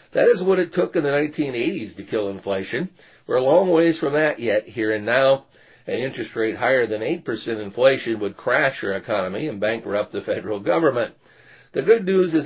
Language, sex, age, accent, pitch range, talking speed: English, male, 50-69, American, 105-155 Hz, 195 wpm